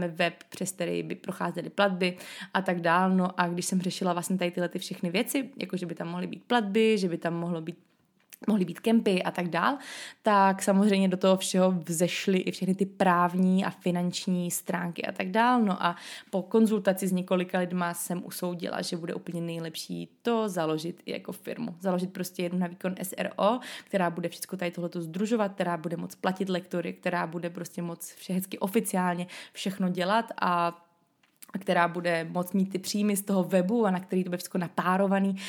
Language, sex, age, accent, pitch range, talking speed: Czech, female, 20-39, native, 175-200 Hz, 195 wpm